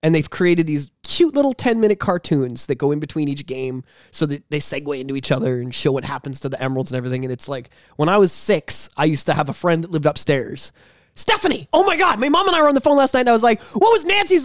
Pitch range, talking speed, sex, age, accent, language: 155-240 Hz, 280 wpm, male, 20-39, American, English